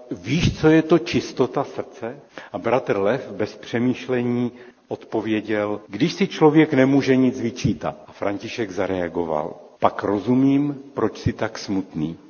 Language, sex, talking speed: Czech, male, 130 wpm